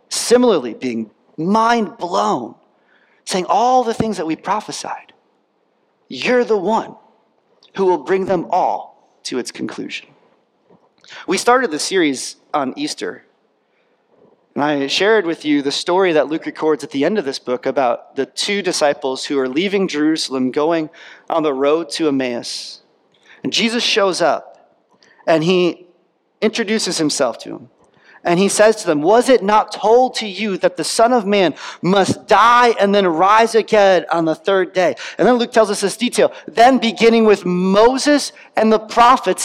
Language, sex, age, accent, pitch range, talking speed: English, male, 30-49, American, 165-230 Hz, 165 wpm